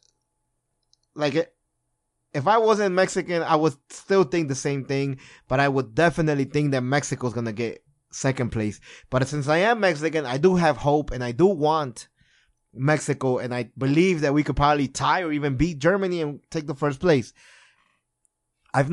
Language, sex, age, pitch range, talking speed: English, male, 20-39, 140-180 Hz, 180 wpm